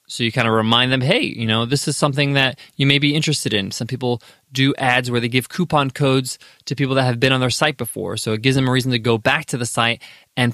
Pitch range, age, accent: 120-150 Hz, 20-39, American